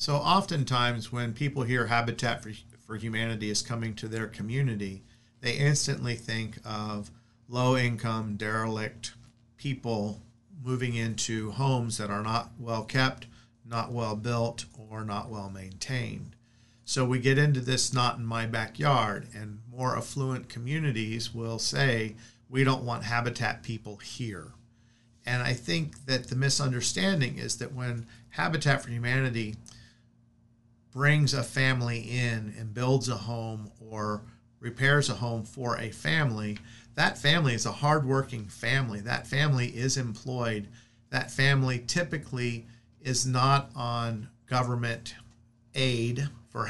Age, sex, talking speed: 50-69, male, 125 wpm